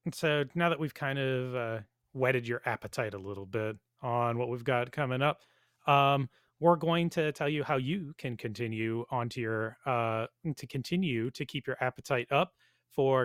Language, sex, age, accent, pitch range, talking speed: English, male, 30-49, American, 120-145 Hz, 190 wpm